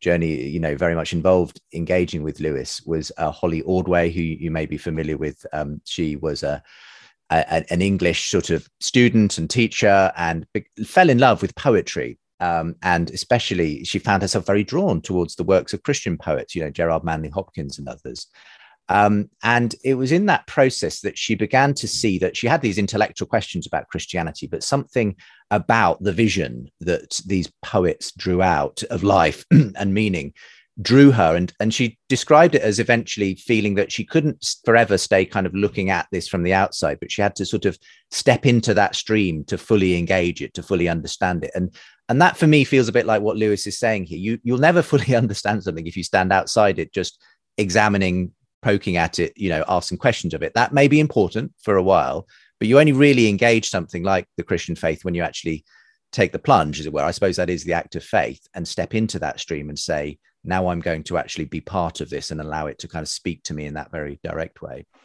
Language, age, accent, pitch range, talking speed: English, 30-49, British, 85-115 Hz, 215 wpm